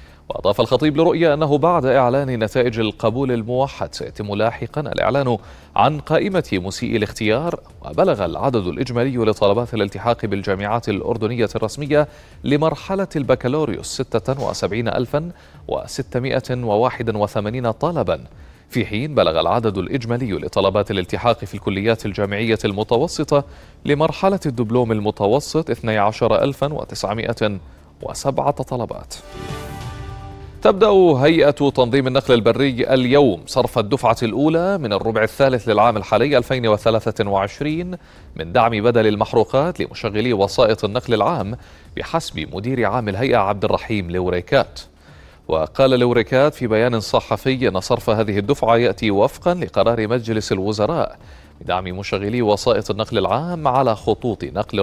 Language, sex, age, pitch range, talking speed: Arabic, male, 30-49, 105-135 Hz, 105 wpm